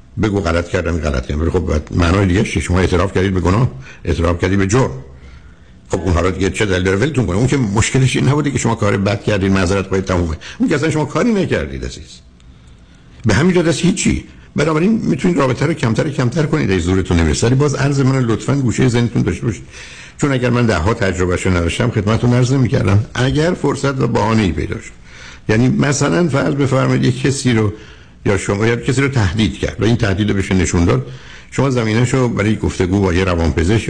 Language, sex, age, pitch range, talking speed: Persian, male, 60-79, 90-125 Hz, 205 wpm